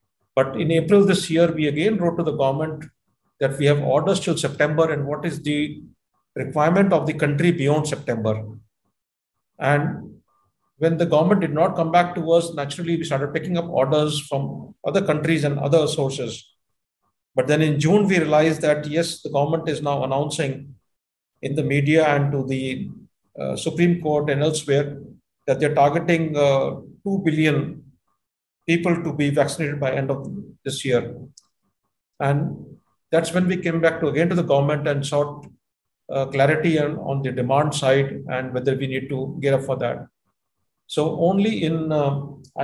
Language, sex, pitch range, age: English, male, 135-165 Hz, 50-69